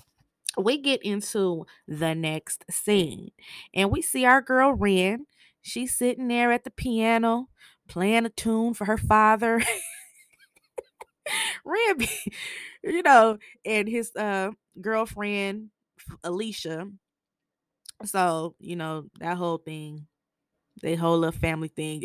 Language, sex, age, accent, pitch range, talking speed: English, female, 20-39, American, 165-220 Hz, 115 wpm